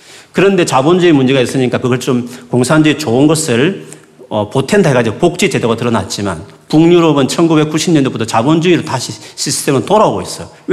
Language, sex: Korean, male